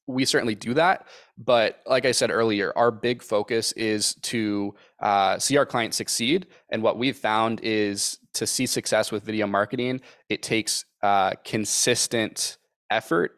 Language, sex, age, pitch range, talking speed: English, male, 20-39, 100-110 Hz, 155 wpm